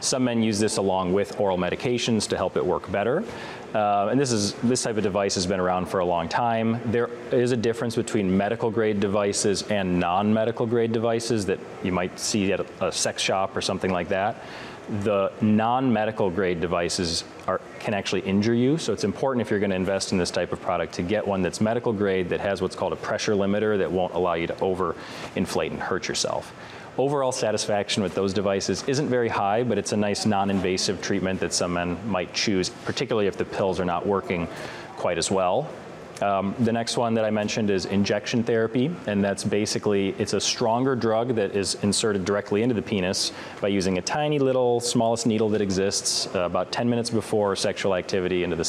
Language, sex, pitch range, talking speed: English, male, 95-115 Hz, 205 wpm